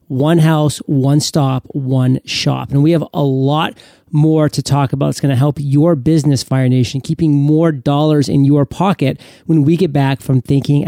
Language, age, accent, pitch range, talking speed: English, 40-59, American, 145-185 Hz, 195 wpm